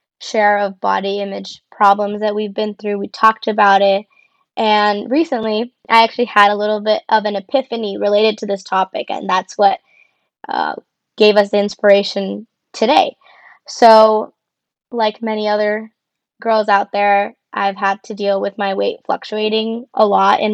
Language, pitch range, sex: English, 200-225 Hz, female